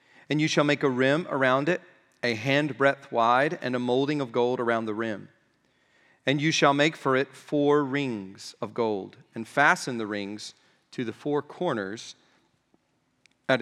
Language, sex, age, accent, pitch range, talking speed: English, male, 40-59, American, 125-150 Hz, 170 wpm